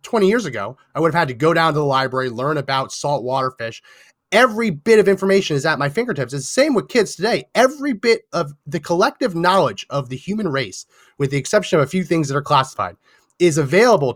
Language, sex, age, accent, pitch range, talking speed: English, male, 30-49, American, 150-200 Hz, 225 wpm